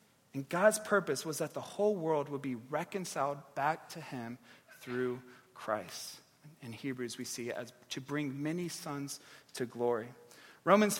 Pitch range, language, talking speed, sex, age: 140-205 Hz, English, 160 wpm, male, 40-59